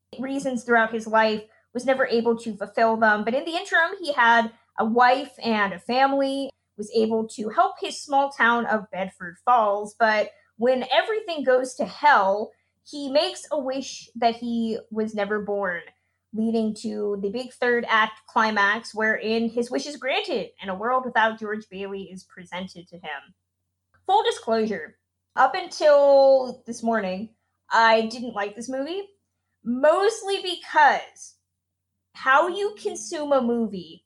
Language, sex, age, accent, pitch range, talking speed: English, female, 20-39, American, 205-270 Hz, 150 wpm